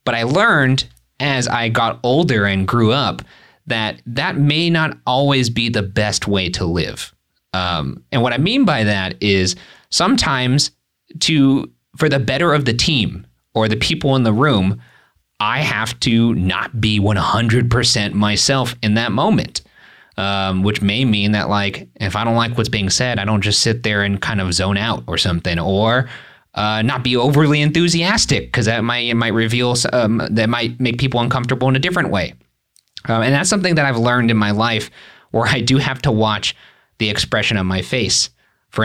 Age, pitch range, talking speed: 30-49, 105-130 Hz, 190 wpm